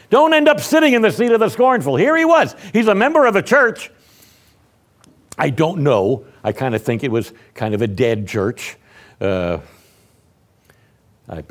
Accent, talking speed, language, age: American, 180 wpm, English, 60-79